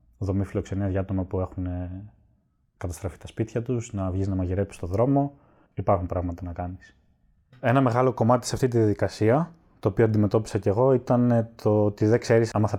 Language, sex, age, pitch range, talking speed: Greek, male, 20-39, 95-120 Hz, 185 wpm